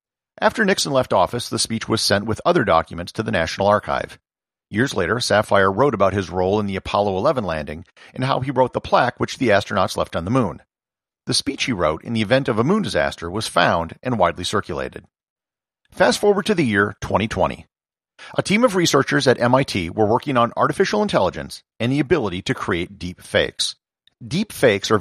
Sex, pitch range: male, 100-140 Hz